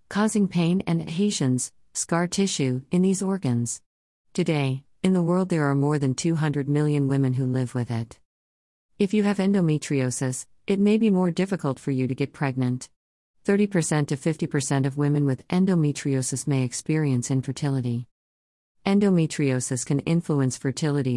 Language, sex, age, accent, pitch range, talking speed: English, female, 50-69, American, 125-165 Hz, 145 wpm